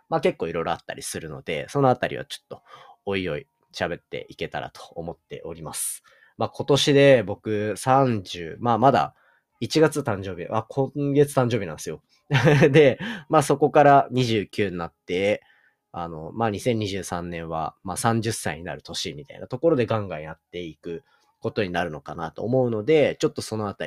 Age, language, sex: 30-49, Japanese, male